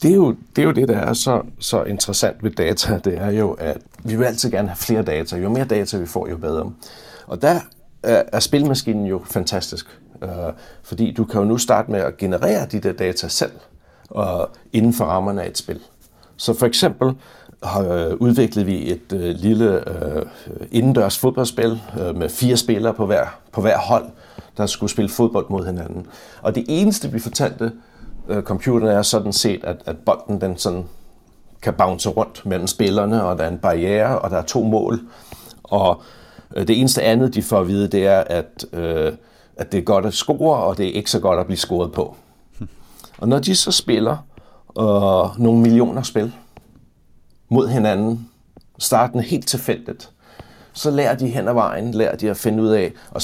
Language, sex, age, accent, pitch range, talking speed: Danish, male, 60-79, native, 100-120 Hz, 180 wpm